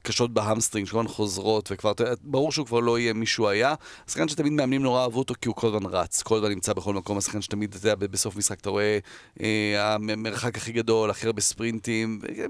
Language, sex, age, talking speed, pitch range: Hebrew, male, 40-59, 215 wpm, 110-135 Hz